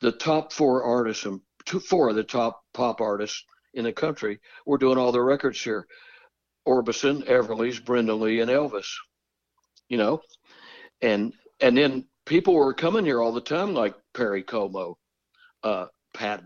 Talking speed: 155 wpm